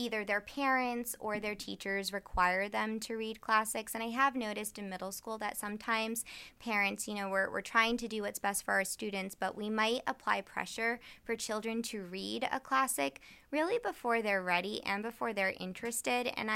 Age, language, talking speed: 20-39, English, 190 wpm